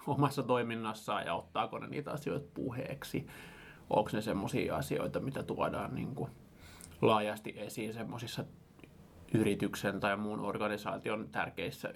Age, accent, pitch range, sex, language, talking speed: 20-39, native, 110-130 Hz, male, Finnish, 115 wpm